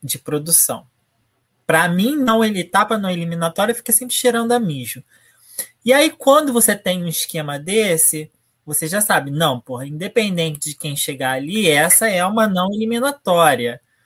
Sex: male